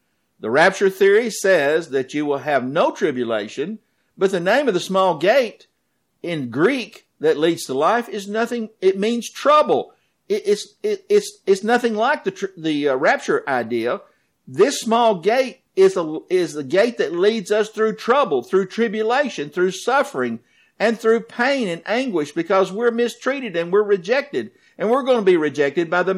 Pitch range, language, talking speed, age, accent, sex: 185-245 Hz, English, 175 wpm, 50-69, American, male